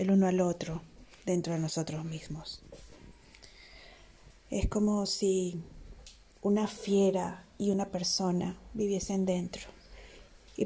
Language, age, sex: Spanish, 30-49, female